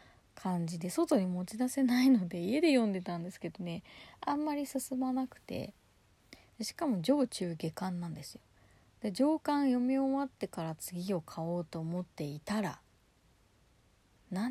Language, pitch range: Japanese, 175-260 Hz